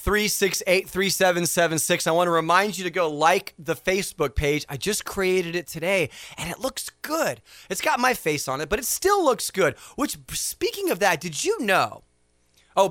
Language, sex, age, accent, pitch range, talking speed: English, male, 30-49, American, 130-180 Hz, 215 wpm